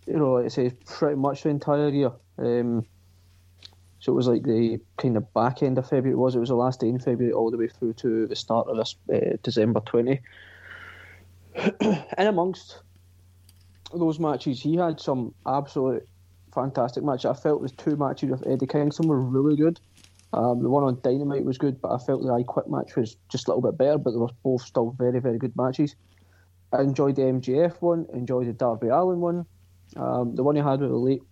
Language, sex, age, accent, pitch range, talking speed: English, male, 20-39, British, 100-145 Hz, 215 wpm